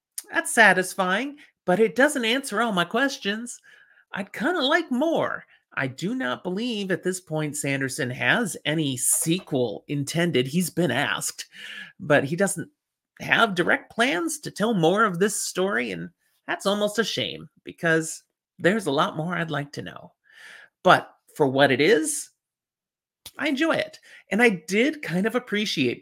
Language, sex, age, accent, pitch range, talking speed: English, male, 30-49, American, 155-230 Hz, 160 wpm